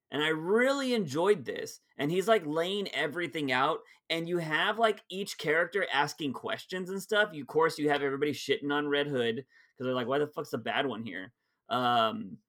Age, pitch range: 30-49, 135-210 Hz